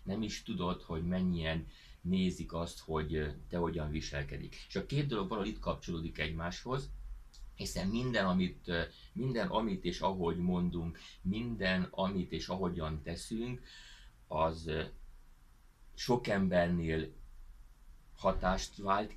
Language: Hungarian